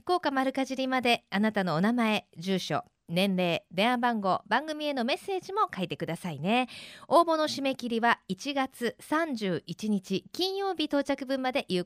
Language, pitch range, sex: Japanese, 190-270 Hz, female